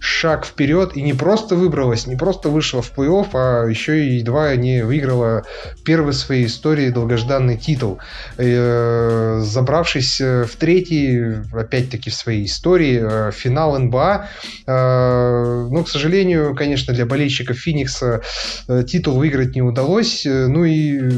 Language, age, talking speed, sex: Russian, 20-39, 135 wpm, male